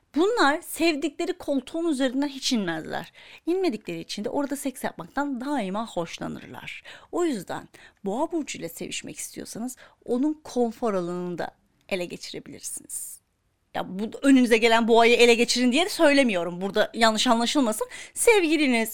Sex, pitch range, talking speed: female, 200-280 Hz, 125 wpm